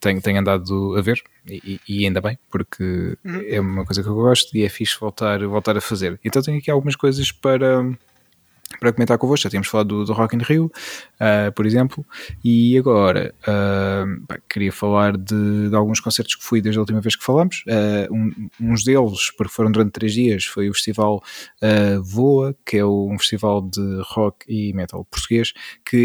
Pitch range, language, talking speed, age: 100-115 Hz, Portuguese, 195 wpm, 20-39